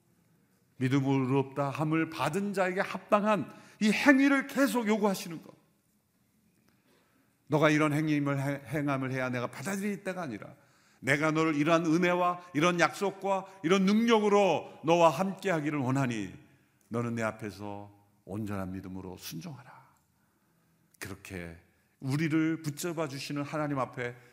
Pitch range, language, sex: 130-180 Hz, Korean, male